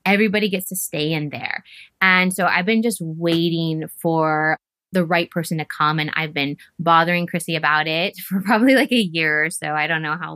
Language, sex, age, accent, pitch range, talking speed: English, female, 20-39, American, 155-180 Hz, 210 wpm